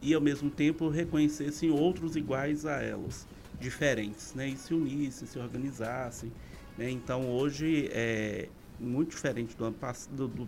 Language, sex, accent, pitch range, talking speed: Portuguese, male, Brazilian, 115-145 Hz, 150 wpm